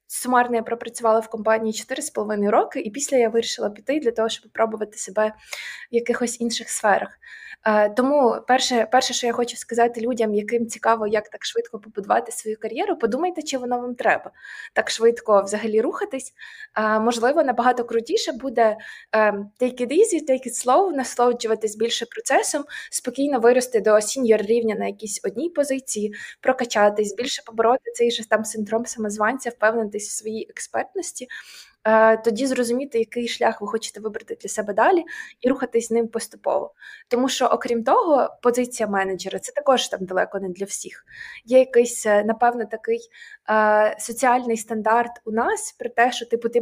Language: Ukrainian